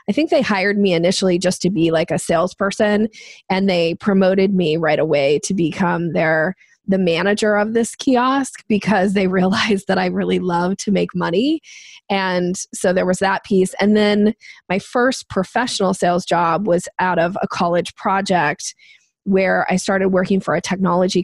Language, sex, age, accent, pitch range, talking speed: English, female, 20-39, American, 180-210 Hz, 175 wpm